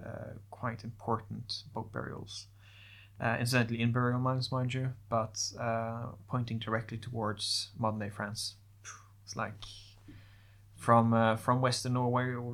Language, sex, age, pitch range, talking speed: English, male, 20-39, 105-120 Hz, 135 wpm